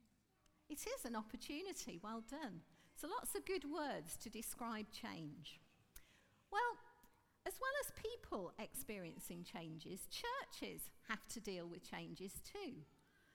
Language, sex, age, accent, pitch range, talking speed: English, female, 50-69, British, 205-295 Hz, 125 wpm